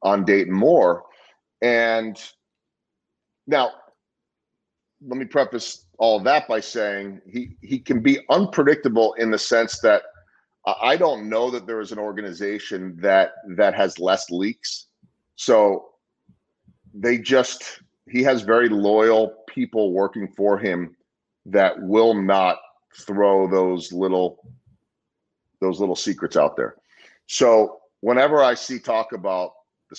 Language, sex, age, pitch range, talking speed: English, male, 30-49, 100-140 Hz, 125 wpm